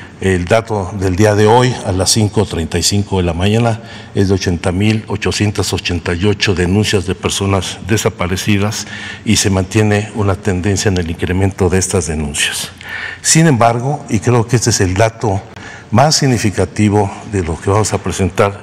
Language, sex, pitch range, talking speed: Spanish, male, 95-115 Hz, 150 wpm